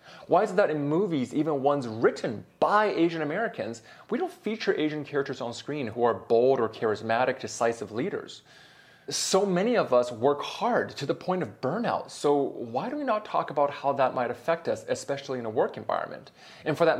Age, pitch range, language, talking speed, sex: 30-49, 120-165 Hz, English, 200 wpm, male